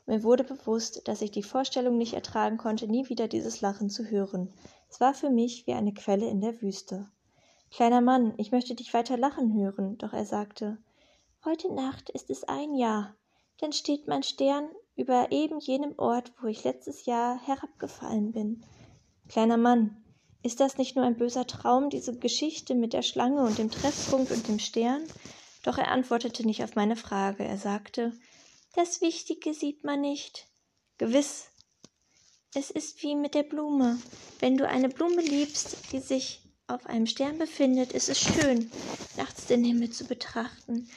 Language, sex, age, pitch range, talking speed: German, female, 10-29, 225-290 Hz, 170 wpm